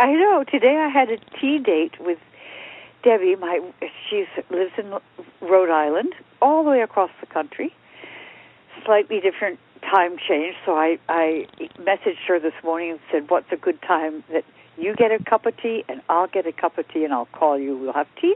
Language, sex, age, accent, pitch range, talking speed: English, female, 60-79, American, 165-250 Hz, 200 wpm